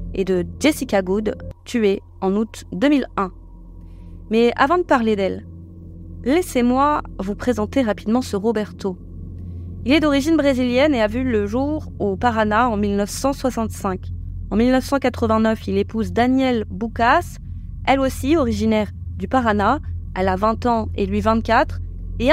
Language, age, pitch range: French, 20-39, 190-260 Hz